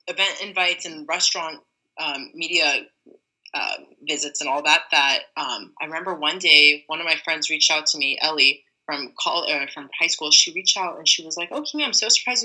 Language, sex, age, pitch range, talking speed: English, female, 20-39, 165-230 Hz, 205 wpm